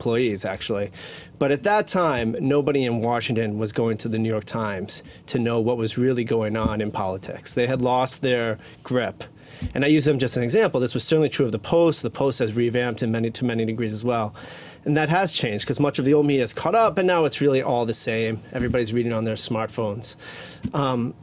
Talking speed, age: 230 wpm, 30-49